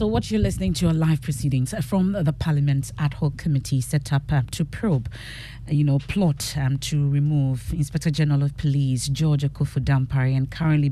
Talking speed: 185 wpm